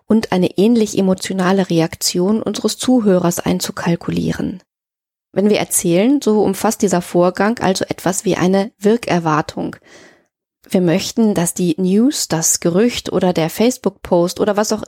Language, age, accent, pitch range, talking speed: German, 20-39, German, 170-210 Hz, 135 wpm